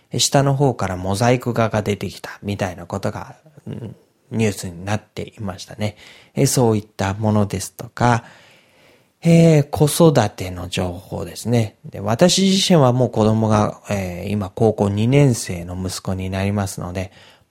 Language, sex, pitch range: Japanese, male, 95-130 Hz